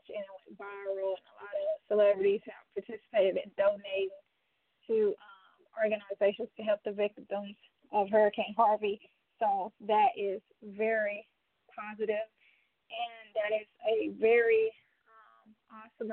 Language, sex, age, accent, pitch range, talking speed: English, female, 20-39, American, 215-285 Hz, 130 wpm